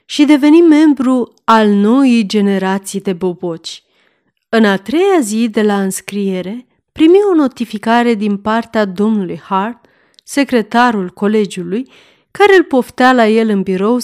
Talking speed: 135 wpm